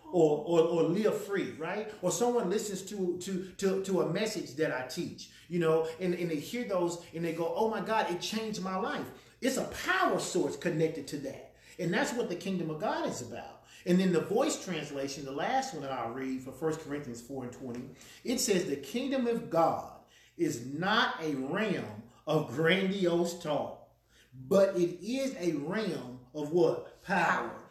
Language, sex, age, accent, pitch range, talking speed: English, male, 40-59, American, 150-195 Hz, 195 wpm